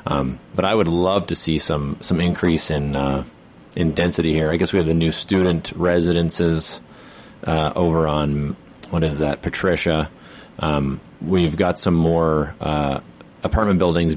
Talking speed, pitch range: 160 wpm, 80-95 Hz